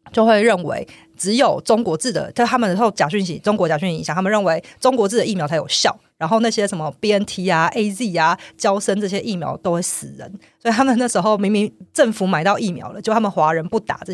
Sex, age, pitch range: female, 30-49, 175-215 Hz